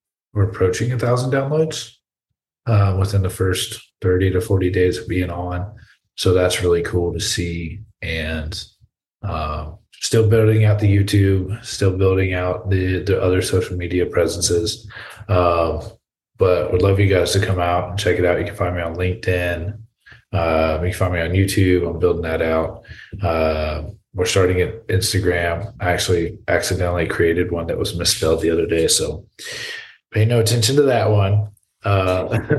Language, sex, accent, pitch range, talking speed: English, male, American, 90-110 Hz, 170 wpm